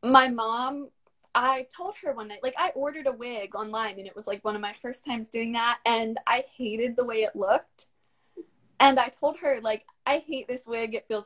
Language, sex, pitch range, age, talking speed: English, female, 235-295 Hz, 20-39, 225 wpm